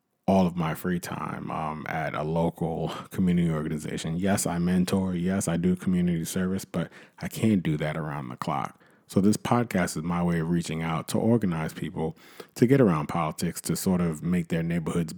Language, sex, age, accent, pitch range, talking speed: English, male, 30-49, American, 85-105 Hz, 195 wpm